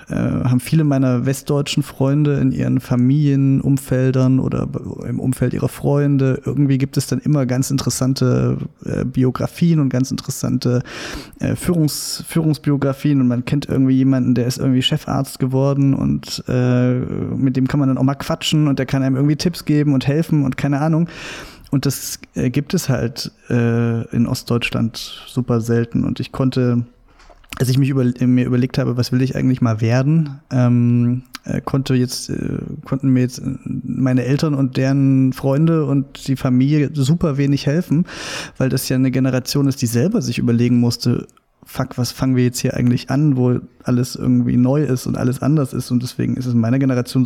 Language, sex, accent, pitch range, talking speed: German, male, German, 125-140 Hz, 170 wpm